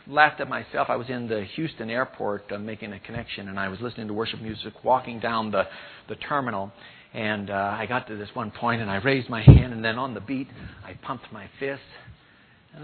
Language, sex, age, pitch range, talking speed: English, male, 50-69, 110-155 Hz, 225 wpm